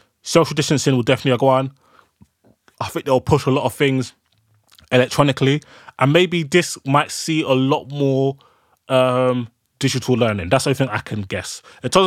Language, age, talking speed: English, 20-39, 175 wpm